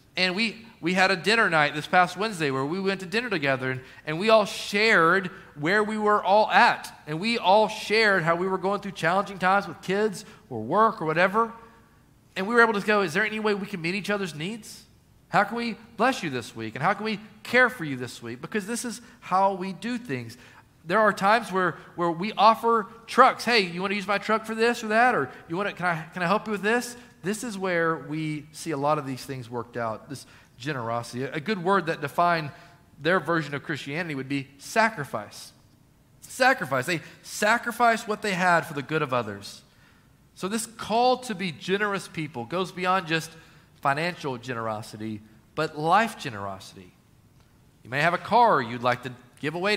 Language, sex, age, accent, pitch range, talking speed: English, male, 40-59, American, 140-210 Hz, 210 wpm